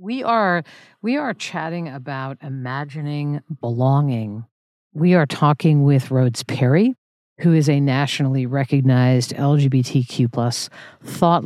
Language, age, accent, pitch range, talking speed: English, 50-69, American, 135-175 Hz, 115 wpm